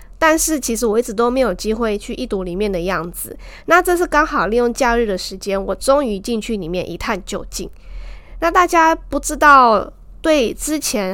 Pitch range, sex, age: 195-270 Hz, female, 20-39